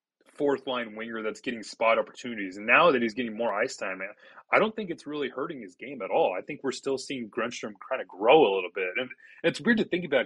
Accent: American